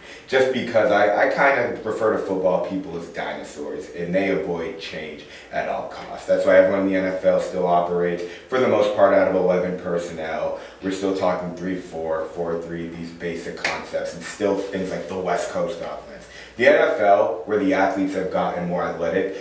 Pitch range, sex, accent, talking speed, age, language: 90-100 Hz, male, American, 190 wpm, 30-49, English